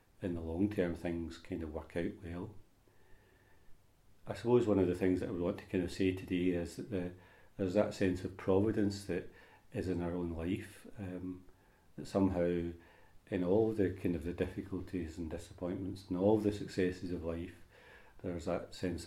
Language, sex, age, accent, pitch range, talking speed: English, male, 40-59, British, 85-100 Hz, 185 wpm